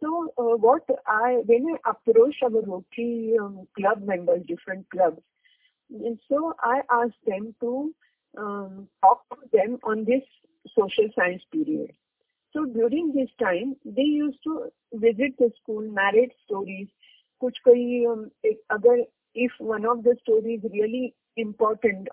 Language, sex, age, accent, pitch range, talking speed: English, female, 50-69, Indian, 220-275 Hz, 130 wpm